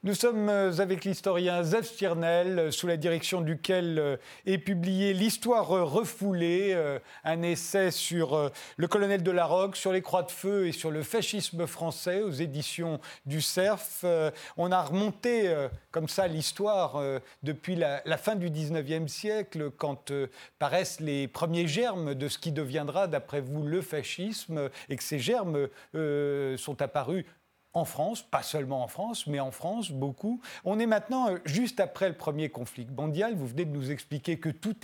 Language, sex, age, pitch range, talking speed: French, male, 40-59, 150-195 Hz, 160 wpm